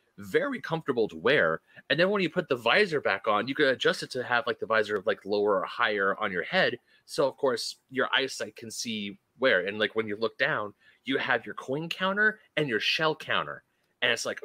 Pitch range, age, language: 115-195 Hz, 30-49, English